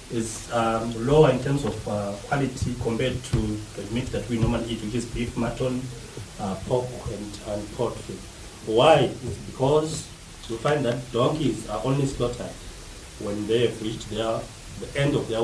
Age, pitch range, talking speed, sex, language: 40-59, 110-130 Hz, 170 wpm, male, English